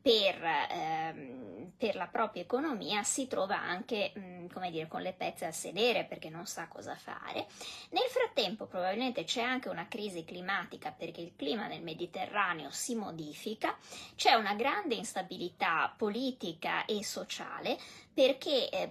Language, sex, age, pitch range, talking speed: Italian, female, 20-39, 175-250 Hz, 145 wpm